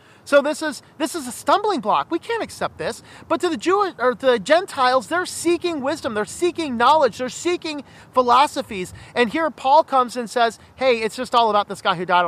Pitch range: 225-300 Hz